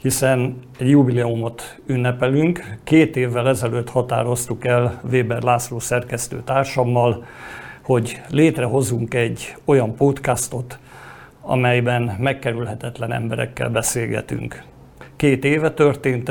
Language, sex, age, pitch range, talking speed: Hungarian, male, 50-69, 120-135 Hz, 90 wpm